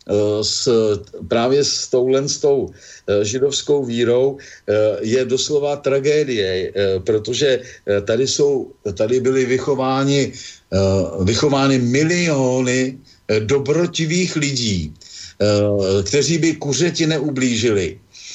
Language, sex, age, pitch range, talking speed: Slovak, male, 50-69, 115-145 Hz, 80 wpm